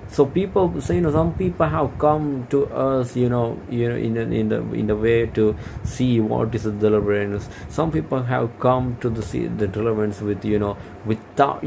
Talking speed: 205 wpm